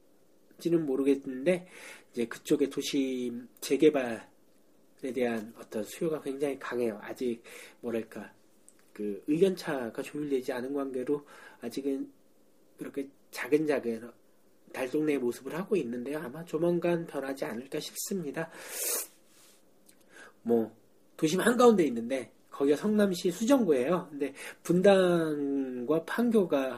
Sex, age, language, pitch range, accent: male, 40-59, Korean, 125-175 Hz, native